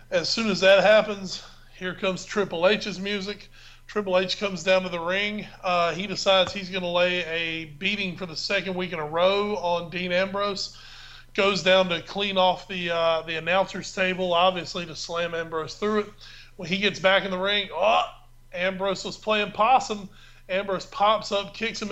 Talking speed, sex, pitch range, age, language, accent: 185 wpm, male, 170-195 Hz, 30-49, English, American